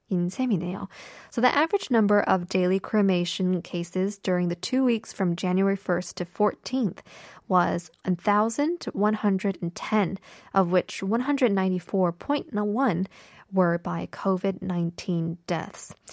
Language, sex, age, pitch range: Korean, female, 10-29, 180-225 Hz